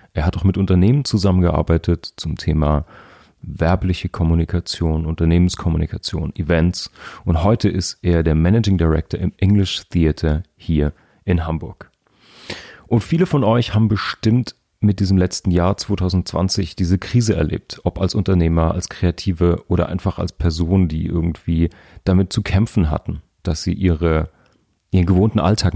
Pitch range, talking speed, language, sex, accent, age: 85-100 Hz, 140 wpm, English, male, German, 40-59